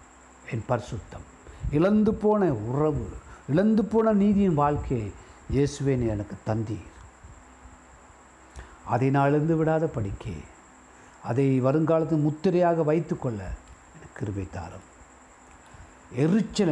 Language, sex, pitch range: Tamil, male, 90-155 Hz